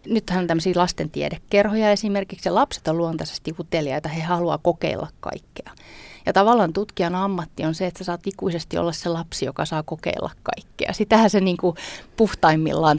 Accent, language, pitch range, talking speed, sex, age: native, Finnish, 160-195 Hz, 160 wpm, female, 30-49